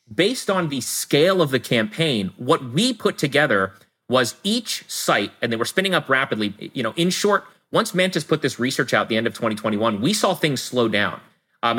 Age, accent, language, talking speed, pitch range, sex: 30-49, American, English, 210 wpm, 115-160 Hz, male